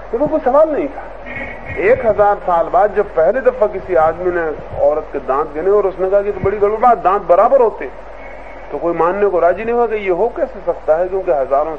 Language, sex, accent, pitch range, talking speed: English, male, Indian, 160-215 Hz, 225 wpm